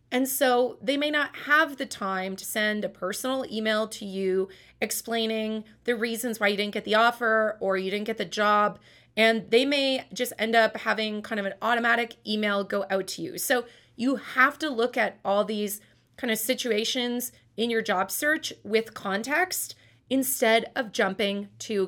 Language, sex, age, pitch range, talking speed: English, female, 30-49, 205-260 Hz, 185 wpm